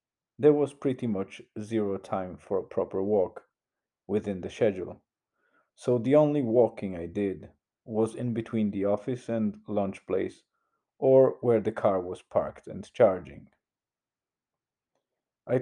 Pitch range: 100-125 Hz